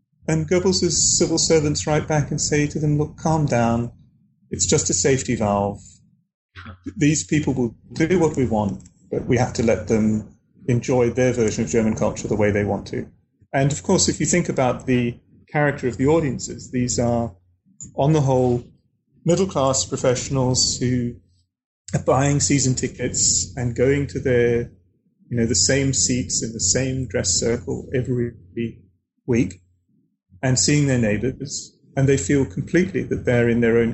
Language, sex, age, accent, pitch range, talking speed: English, male, 30-49, British, 115-150 Hz, 170 wpm